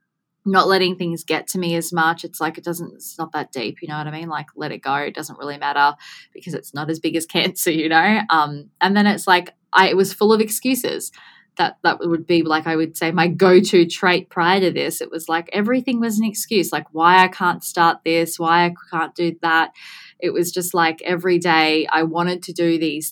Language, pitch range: English, 160-190 Hz